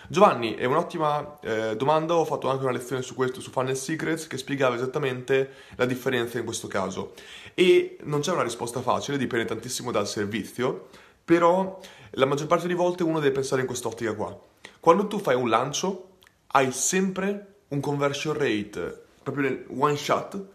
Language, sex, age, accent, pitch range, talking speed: Italian, male, 20-39, native, 130-175 Hz, 170 wpm